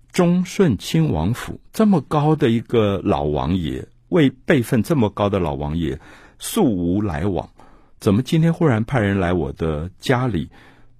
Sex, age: male, 60-79